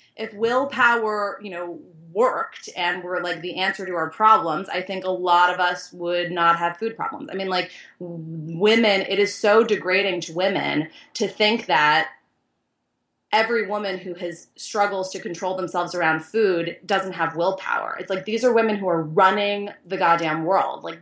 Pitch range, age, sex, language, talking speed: 180-225 Hz, 30-49, female, English, 175 wpm